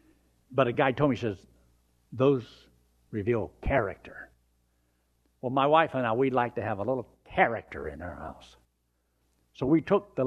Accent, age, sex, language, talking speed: American, 60-79, male, English, 170 wpm